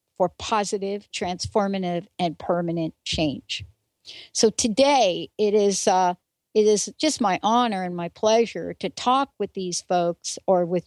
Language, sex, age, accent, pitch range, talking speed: English, female, 60-79, American, 185-240 Hz, 145 wpm